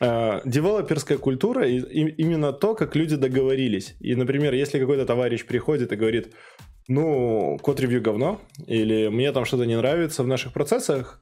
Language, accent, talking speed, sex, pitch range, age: Russian, native, 145 wpm, male, 110-140 Hz, 20-39